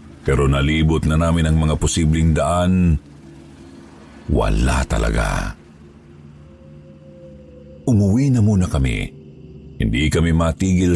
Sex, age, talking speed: male, 50-69, 95 wpm